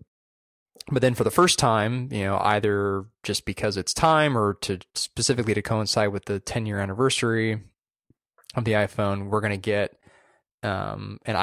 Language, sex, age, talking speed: English, male, 20-39, 170 wpm